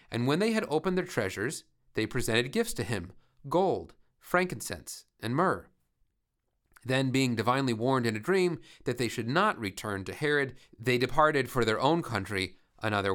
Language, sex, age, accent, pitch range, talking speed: English, male, 30-49, American, 105-145 Hz, 170 wpm